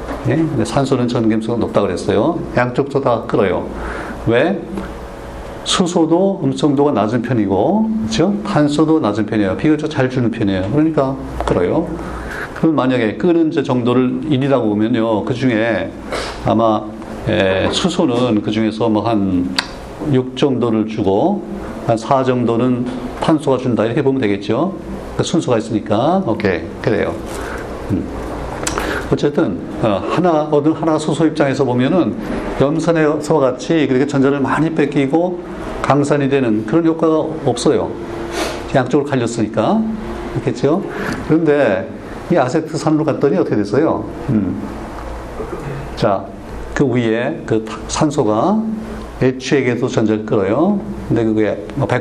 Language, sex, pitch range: Korean, male, 110-155 Hz